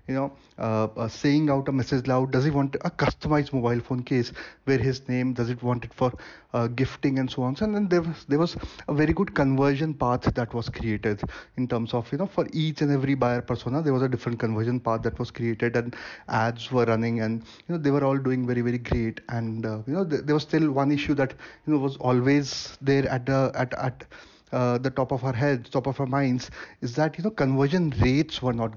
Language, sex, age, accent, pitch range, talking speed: English, male, 30-49, Indian, 120-140 Hz, 240 wpm